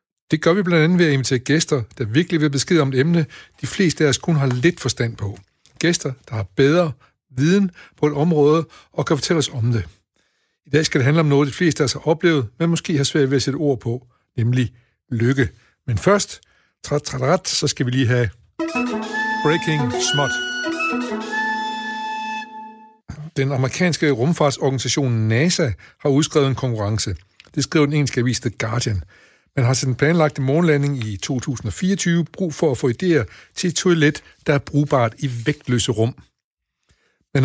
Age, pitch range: 60-79, 115-160 Hz